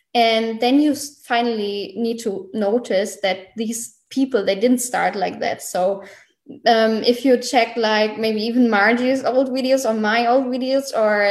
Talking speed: 165 wpm